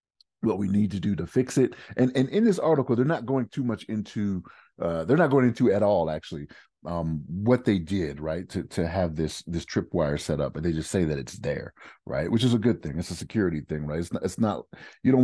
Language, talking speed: English, 250 wpm